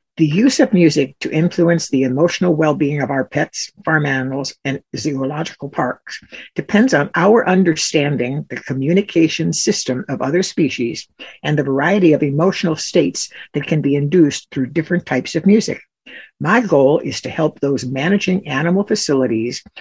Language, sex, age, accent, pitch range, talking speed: English, female, 60-79, American, 135-170 Hz, 155 wpm